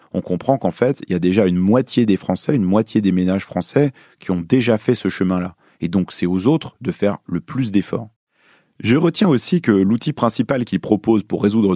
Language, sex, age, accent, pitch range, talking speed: French, male, 30-49, French, 100-125 Hz, 220 wpm